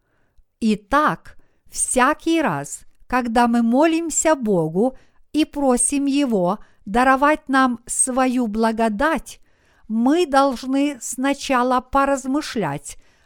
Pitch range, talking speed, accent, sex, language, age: 215-285 Hz, 80 wpm, native, female, Russian, 50-69